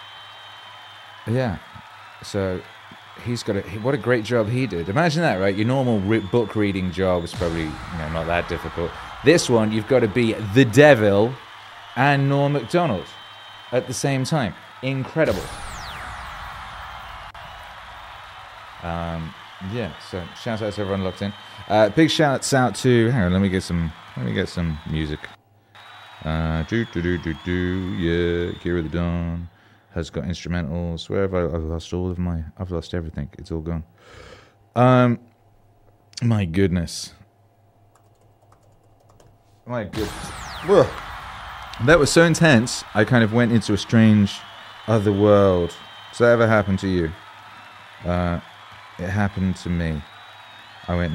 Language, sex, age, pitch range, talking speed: English, male, 30-49, 85-115 Hz, 150 wpm